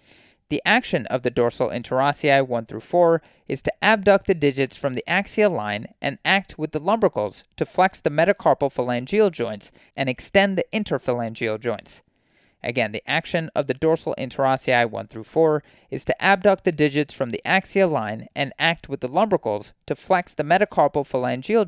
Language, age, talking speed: English, 30-49, 175 wpm